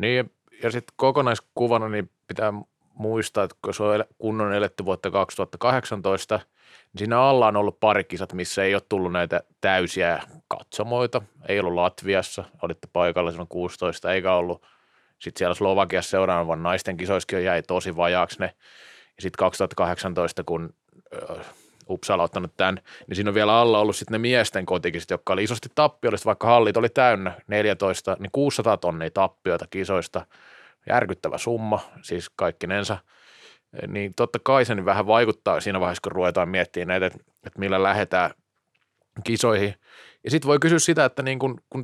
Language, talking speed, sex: Finnish, 150 wpm, male